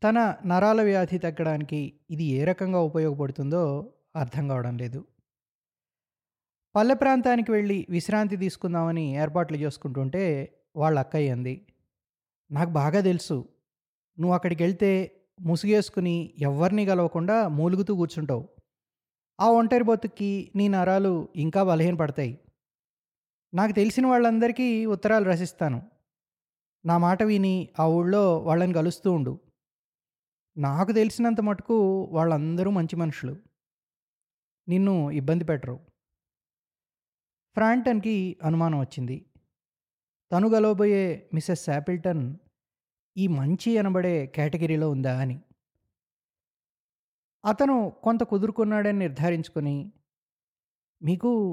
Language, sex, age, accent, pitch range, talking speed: Telugu, male, 20-39, native, 150-200 Hz, 90 wpm